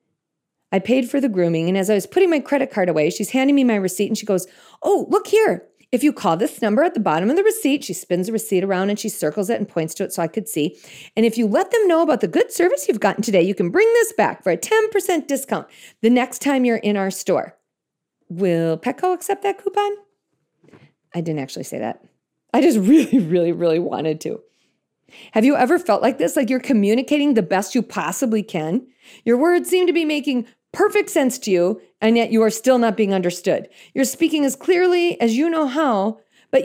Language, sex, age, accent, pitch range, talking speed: English, female, 40-59, American, 195-295 Hz, 230 wpm